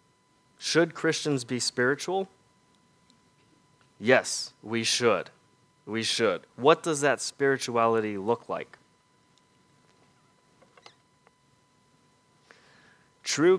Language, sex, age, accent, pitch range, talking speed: English, male, 30-49, American, 95-130 Hz, 70 wpm